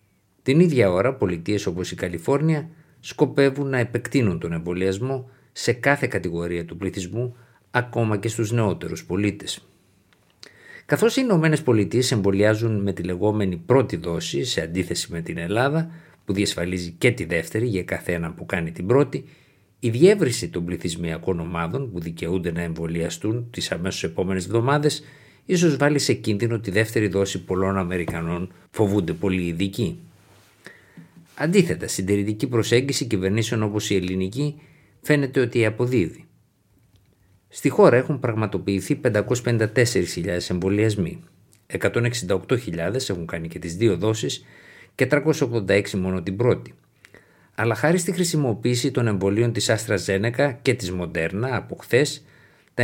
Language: Greek